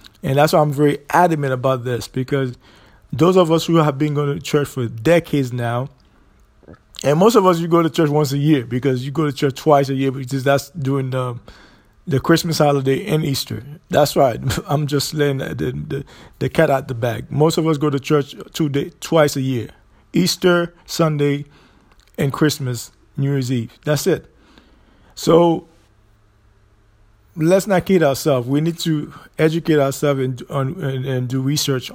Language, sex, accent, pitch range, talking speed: English, male, American, 125-155 Hz, 180 wpm